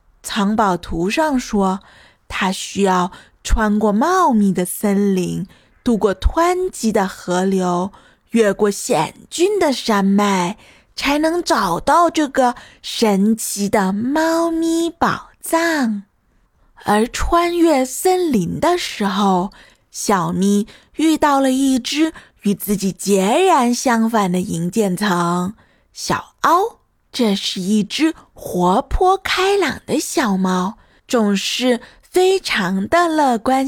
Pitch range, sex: 195-315 Hz, female